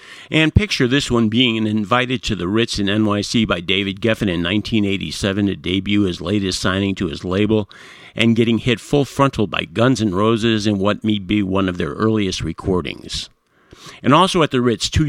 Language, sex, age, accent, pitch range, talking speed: English, male, 50-69, American, 100-115 Hz, 190 wpm